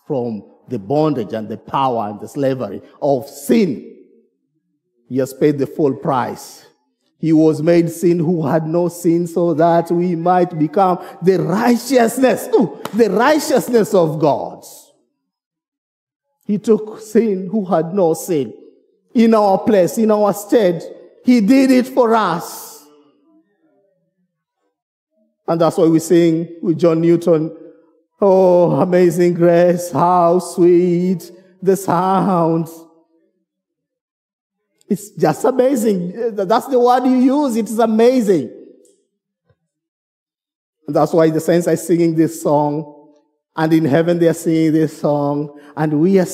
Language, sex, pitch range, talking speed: English, male, 160-225 Hz, 130 wpm